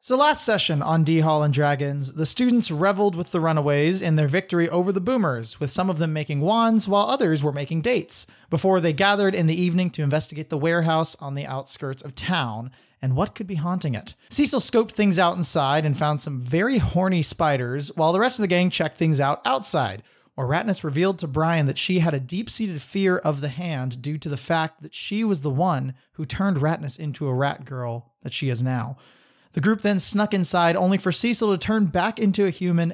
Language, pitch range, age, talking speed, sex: English, 140-180 Hz, 30-49, 220 wpm, male